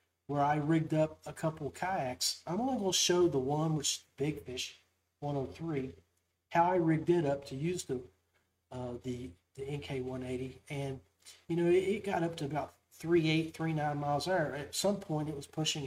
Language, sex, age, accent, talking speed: English, male, 40-59, American, 195 wpm